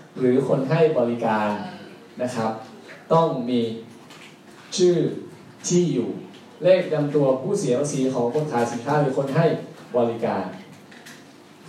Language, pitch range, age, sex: Thai, 135-185 Hz, 20-39, male